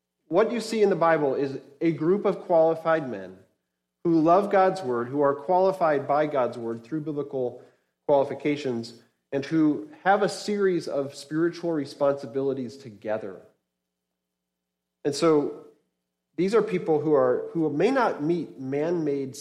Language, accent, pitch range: English, American, 120-165 Hz